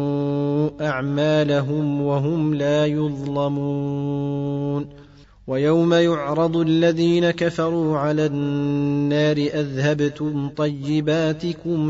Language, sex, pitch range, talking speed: Arabic, male, 140-150 Hz, 60 wpm